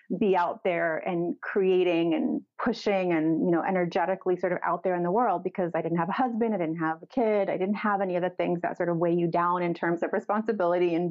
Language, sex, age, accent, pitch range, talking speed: English, female, 30-49, American, 170-200 Hz, 255 wpm